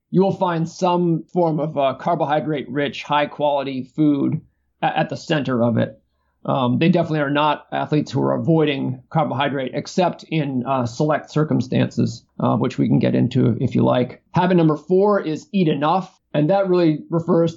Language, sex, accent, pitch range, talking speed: English, male, American, 140-165 Hz, 175 wpm